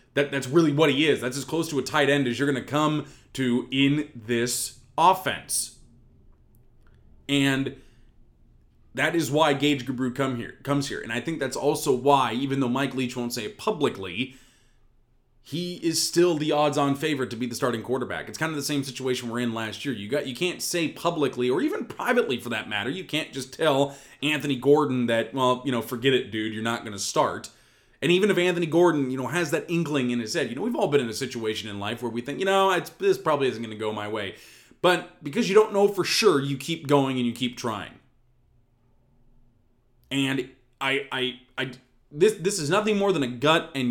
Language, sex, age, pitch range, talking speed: English, male, 20-39, 120-160 Hz, 220 wpm